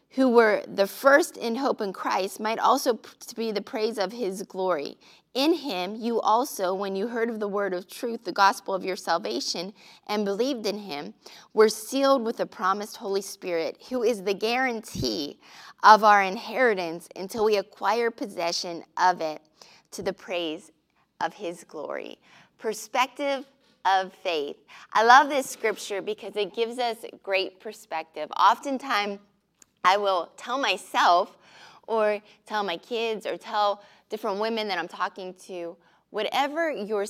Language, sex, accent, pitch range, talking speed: English, female, American, 185-235 Hz, 155 wpm